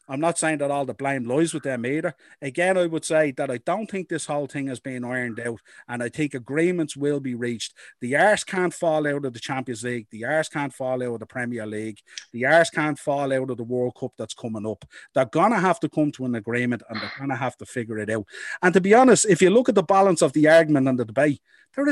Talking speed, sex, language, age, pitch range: 270 wpm, male, English, 30-49, 140-225 Hz